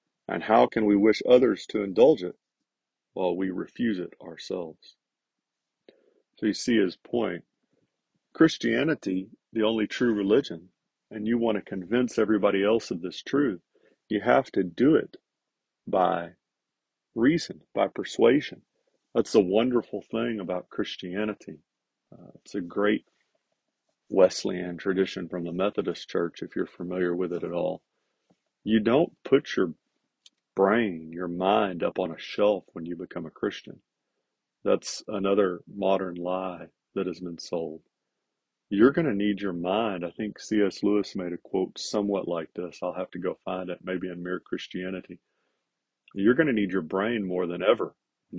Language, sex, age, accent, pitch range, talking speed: English, male, 40-59, American, 90-105 Hz, 155 wpm